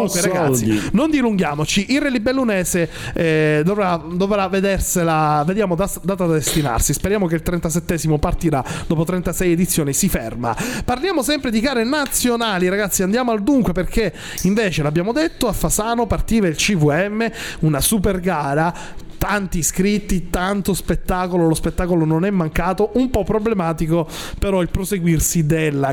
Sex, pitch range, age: male, 160-205 Hz, 30-49